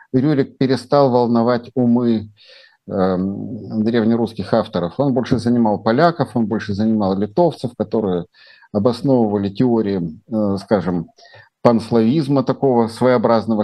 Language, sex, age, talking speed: Russian, male, 50-69, 100 wpm